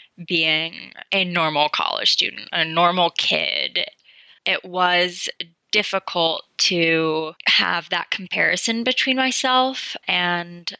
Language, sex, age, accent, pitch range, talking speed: English, female, 10-29, American, 170-205 Hz, 100 wpm